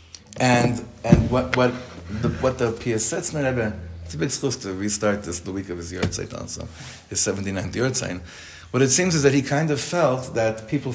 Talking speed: 195 wpm